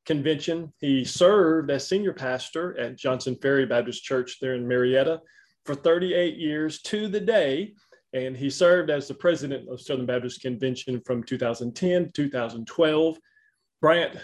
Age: 30-49